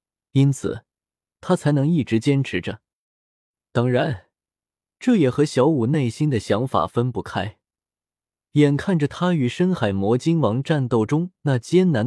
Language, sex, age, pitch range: Chinese, male, 20-39, 110-170 Hz